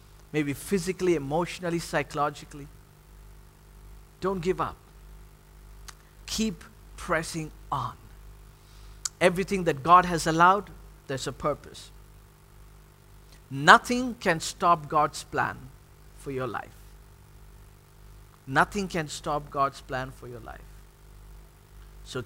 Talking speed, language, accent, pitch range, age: 95 wpm, English, Indian, 135-160 Hz, 50-69